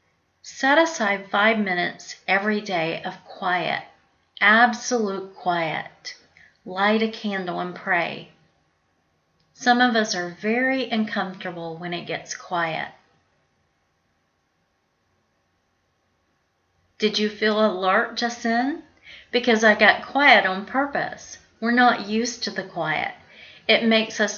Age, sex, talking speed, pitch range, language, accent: 40-59, female, 110 wpm, 190-235 Hz, English, American